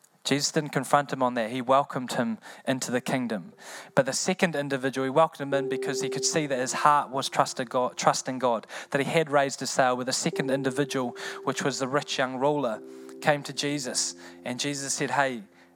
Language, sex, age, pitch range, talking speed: English, male, 20-39, 125-145 Hz, 200 wpm